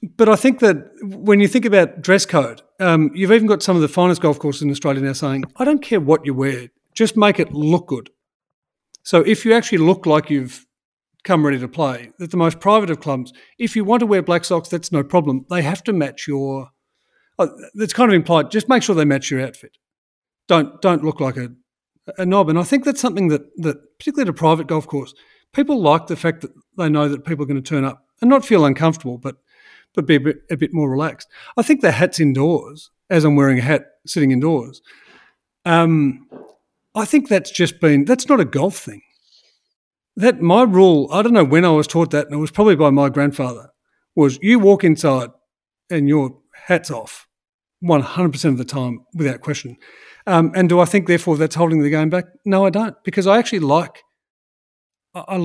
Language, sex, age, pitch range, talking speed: English, male, 40-59, 145-195 Hz, 215 wpm